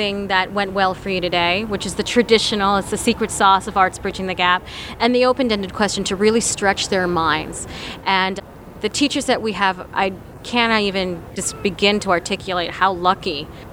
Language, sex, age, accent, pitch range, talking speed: English, female, 30-49, American, 185-220 Hz, 190 wpm